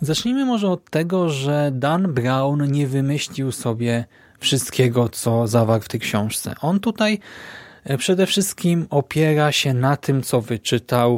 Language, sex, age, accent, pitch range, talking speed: Polish, male, 20-39, native, 120-160 Hz, 140 wpm